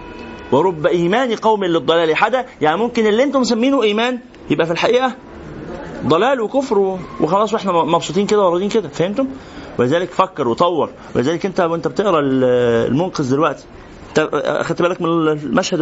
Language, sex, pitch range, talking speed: Arabic, male, 160-220 Hz, 140 wpm